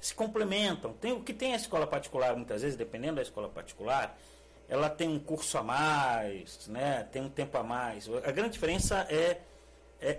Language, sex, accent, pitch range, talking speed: Portuguese, male, Brazilian, 110-155 Hz, 190 wpm